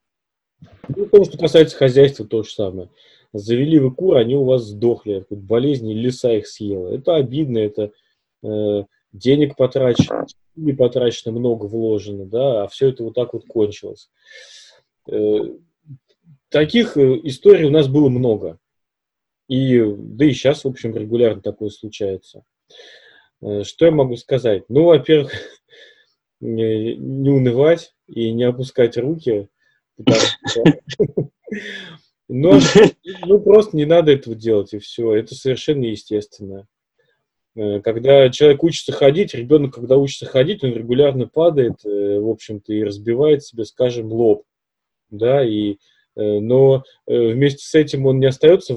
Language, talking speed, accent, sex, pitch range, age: Russian, 130 wpm, native, male, 110-150 Hz, 20-39